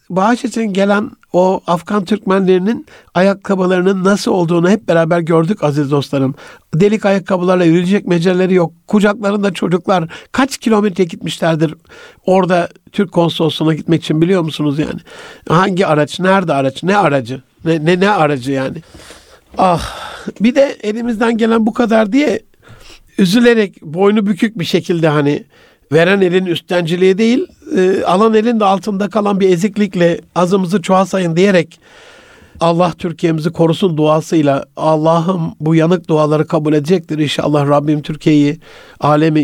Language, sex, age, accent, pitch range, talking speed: Turkish, male, 60-79, native, 155-205 Hz, 130 wpm